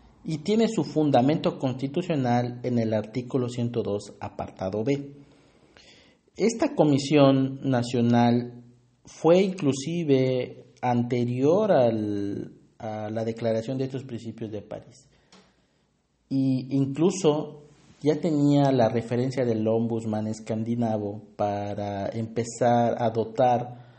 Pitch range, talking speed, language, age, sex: 115-135 Hz, 100 wpm, English, 40-59, male